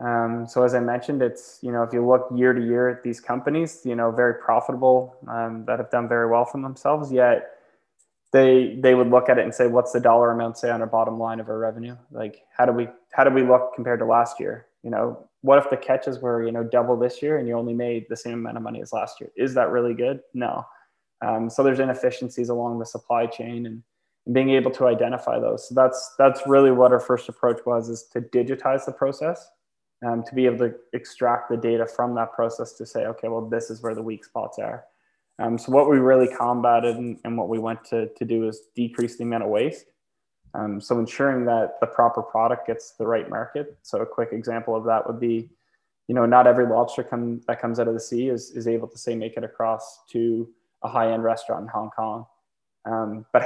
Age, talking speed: 20-39, 235 wpm